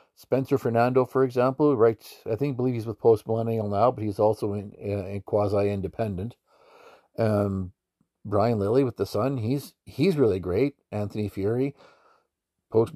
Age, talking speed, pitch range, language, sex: 50-69, 155 wpm, 110-150 Hz, English, male